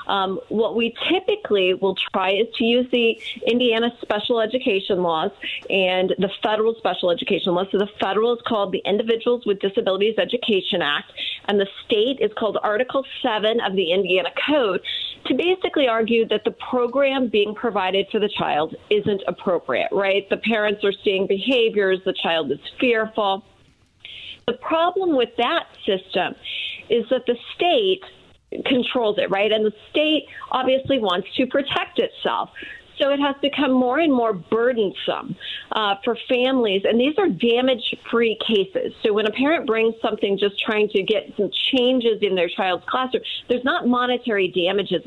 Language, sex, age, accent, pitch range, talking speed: English, female, 40-59, American, 200-255 Hz, 160 wpm